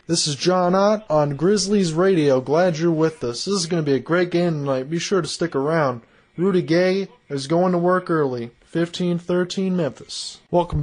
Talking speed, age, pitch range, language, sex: 200 wpm, 20-39, 155-190 Hz, English, male